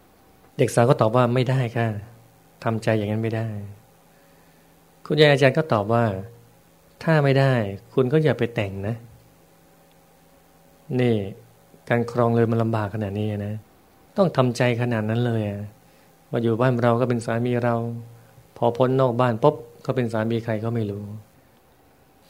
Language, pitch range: Thai, 105-125 Hz